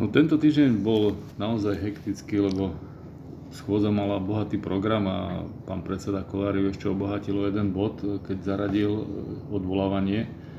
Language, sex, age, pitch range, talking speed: Slovak, male, 30-49, 95-110 Hz, 125 wpm